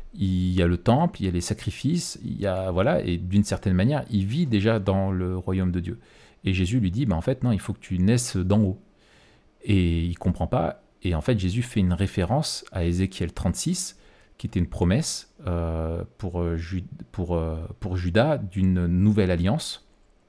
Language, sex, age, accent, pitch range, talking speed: French, male, 40-59, French, 90-115 Hz, 200 wpm